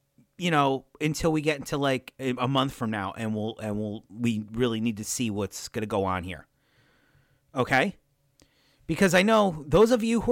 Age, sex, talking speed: 30-49, male, 205 wpm